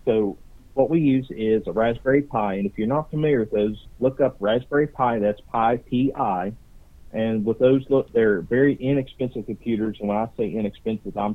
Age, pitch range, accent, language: 40-59, 105-135 Hz, American, English